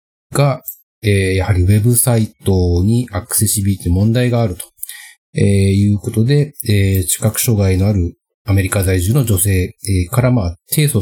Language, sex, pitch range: Japanese, male, 90-115 Hz